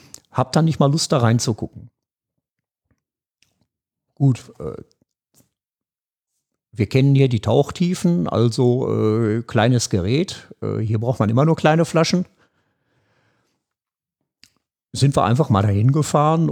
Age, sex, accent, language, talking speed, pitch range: 50-69, male, German, German, 115 wpm, 110-145 Hz